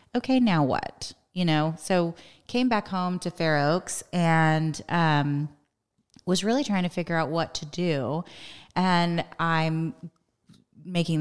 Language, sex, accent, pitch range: English, female, American, 145-170 Hz